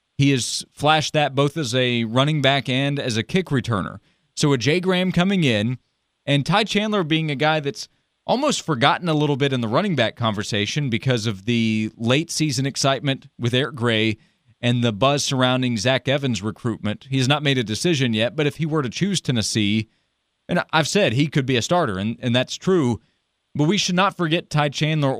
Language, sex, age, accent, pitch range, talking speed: English, male, 30-49, American, 120-155 Hz, 205 wpm